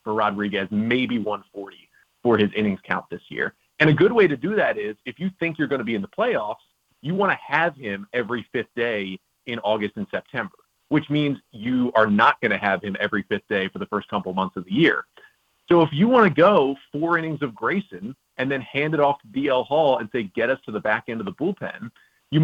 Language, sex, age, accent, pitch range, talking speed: English, male, 30-49, American, 115-155 Hz, 240 wpm